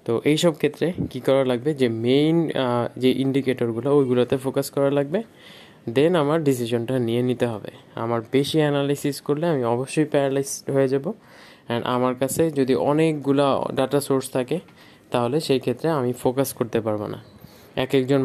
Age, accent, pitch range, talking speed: 20-39, native, 115-140 Hz, 105 wpm